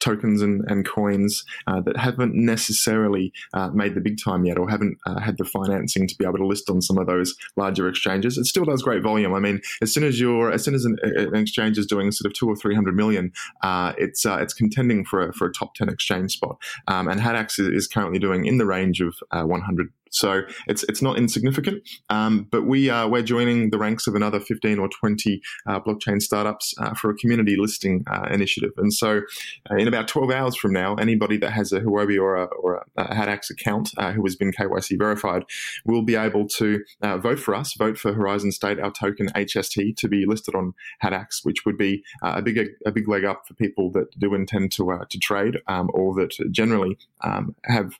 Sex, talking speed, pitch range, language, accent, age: male, 220 wpm, 95-110 Hz, English, Australian, 20-39